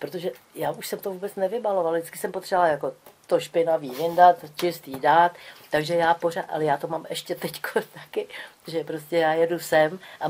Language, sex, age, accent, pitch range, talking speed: Czech, female, 40-59, native, 160-180 Hz, 185 wpm